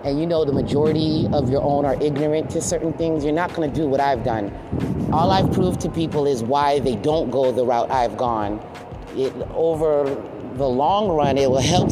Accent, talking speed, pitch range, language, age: American, 205 wpm, 125-150 Hz, English, 30-49